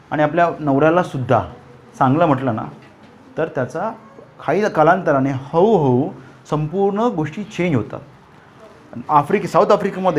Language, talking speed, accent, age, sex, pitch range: Hindi, 90 wpm, native, 30-49, male, 145-195 Hz